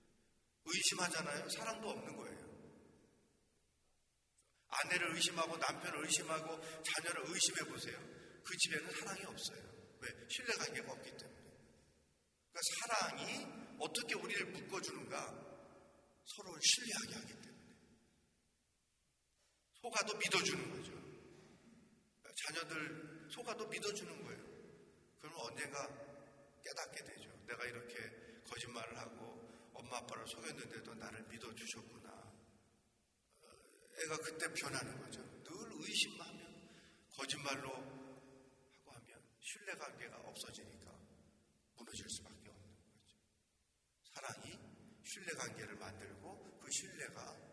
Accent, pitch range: native, 115-160 Hz